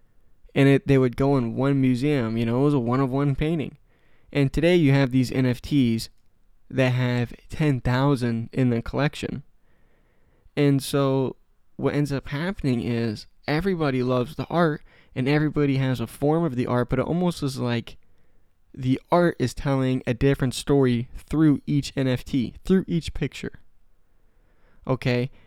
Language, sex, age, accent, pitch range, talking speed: English, male, 20-39, American, 115-140 Hz, 155 wpm